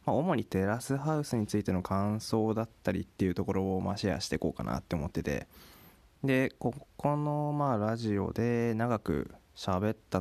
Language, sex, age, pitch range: Japanese, male, 20-39, 90-120 Hz